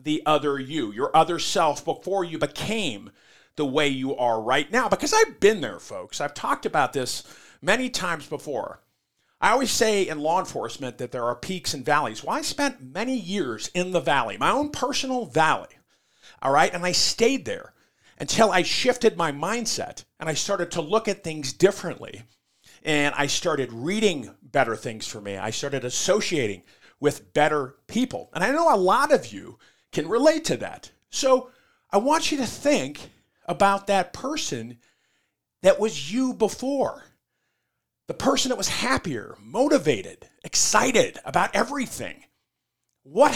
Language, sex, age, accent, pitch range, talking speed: English, male, 40-59, American, 150-250 Hz, 165 wpm